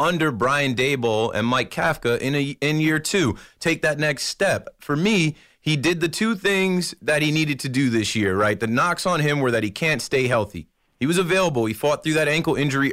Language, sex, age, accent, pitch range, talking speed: English, male, 30-49, American, 120-170 Hz, 225 wpm